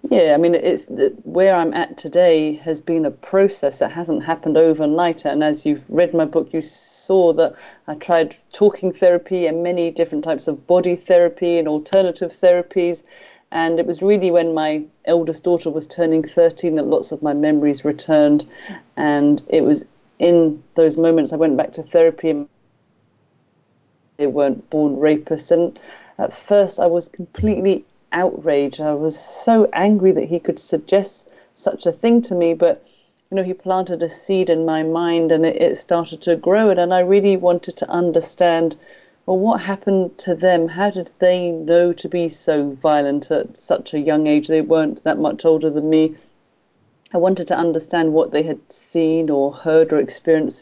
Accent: British